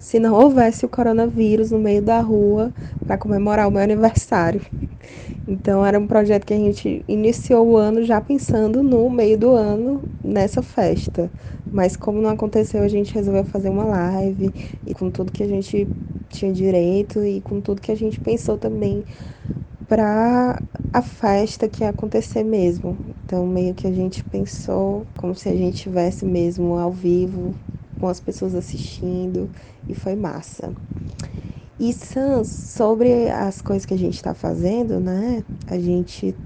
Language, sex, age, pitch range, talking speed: Portuguese, female, 20-39, 180-220 Hz, 165 wpm